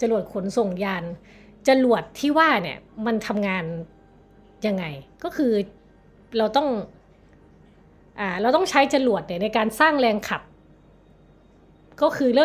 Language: Thai